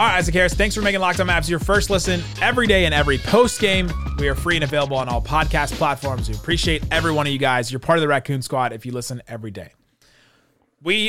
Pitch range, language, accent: 130-180 Hz, English, American